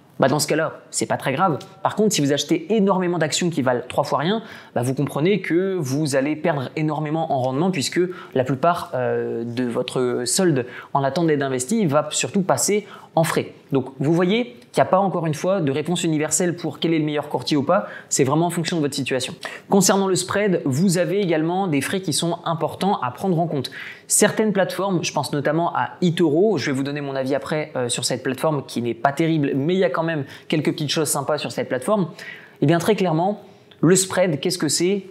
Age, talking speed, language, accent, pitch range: 20-39, 225 wpm, French, French, 140-185 Hz